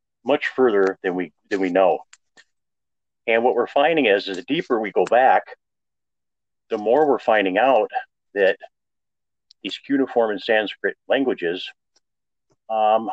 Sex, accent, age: male, American, 40-59